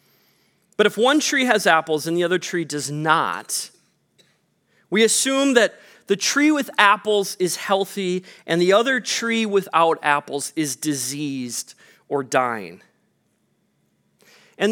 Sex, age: male, 30-49